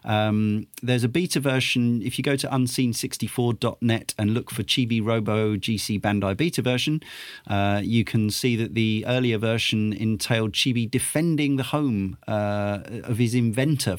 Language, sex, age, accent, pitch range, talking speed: English, male, 40-59, British, 100-125 Hz, 155 wpm